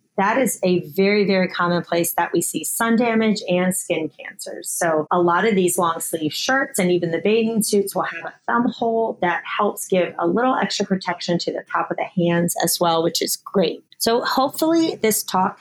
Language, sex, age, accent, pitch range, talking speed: English, female, 30-49, American, 175-220 Hz, 210 wpm